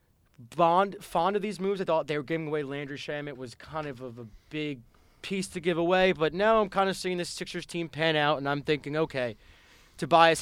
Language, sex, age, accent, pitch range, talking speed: English, male, 20-39, American, 135-165 Hz, 225 wpm